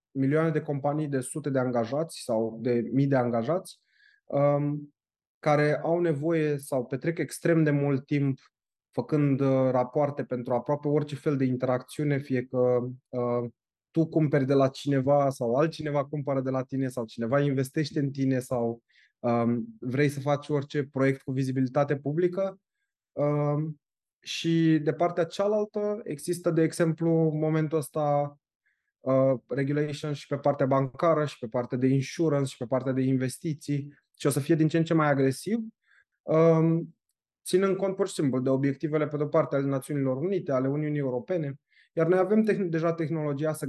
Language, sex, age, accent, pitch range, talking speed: Romanian, male, 20-39, native, 135-155 Hz, 165 wpm